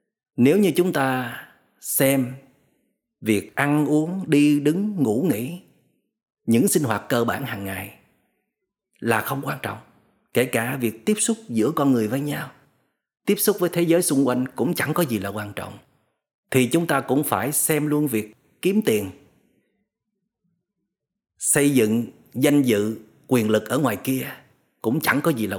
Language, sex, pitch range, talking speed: Vietnamese, male, 120-160 Hz, 165 wpm